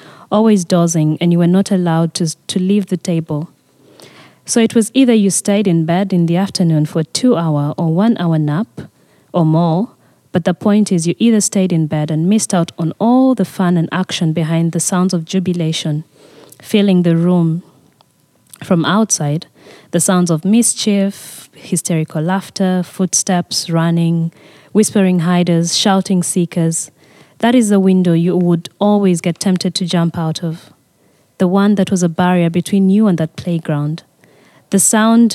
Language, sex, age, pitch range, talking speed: English, female, 20-39, 165-200 Hz, 165 wpm